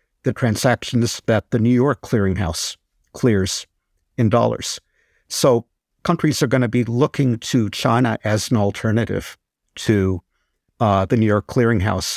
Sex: male